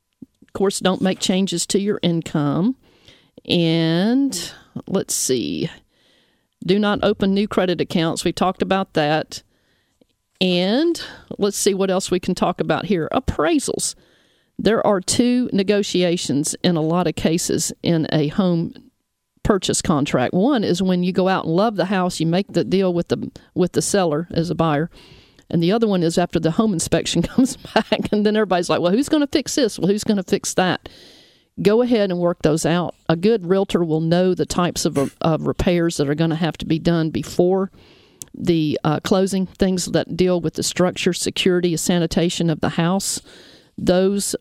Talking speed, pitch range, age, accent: 180 wpm, 165-200 Hz, 50-69, American